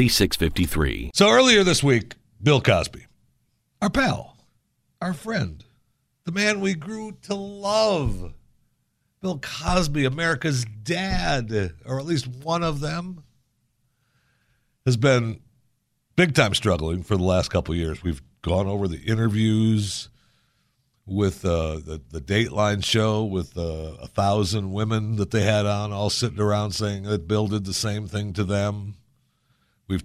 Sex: male